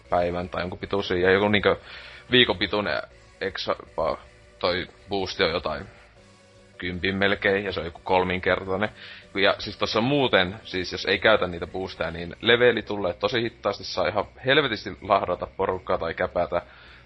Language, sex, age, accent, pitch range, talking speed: Finnish, male, 30-49, native, 90-105 Hz, 150 wpm